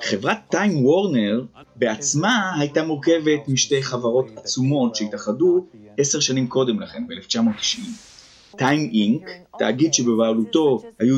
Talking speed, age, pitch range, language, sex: 105 wpm, 30-49, 125-190 Hz, Hebrew, male